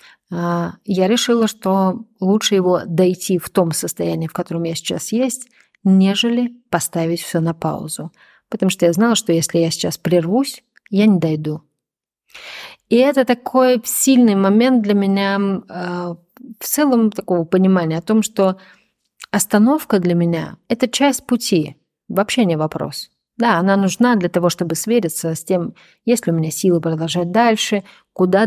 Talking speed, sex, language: 150 wpm, female, Russian